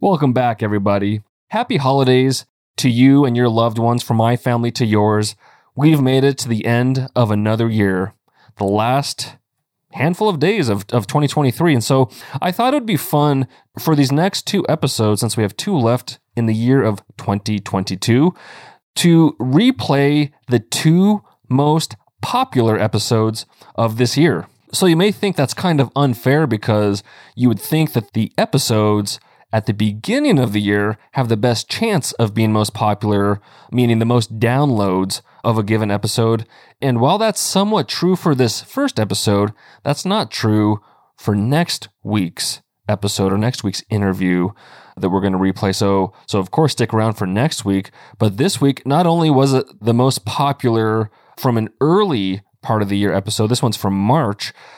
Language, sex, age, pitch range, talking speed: English, male, 30-49, 105-140 Hz, 175 wpm